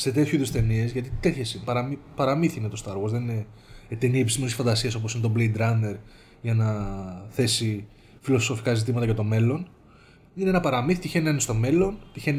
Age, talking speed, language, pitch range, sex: 20-39, 195 wpm, Greek, 115-165 Hz, male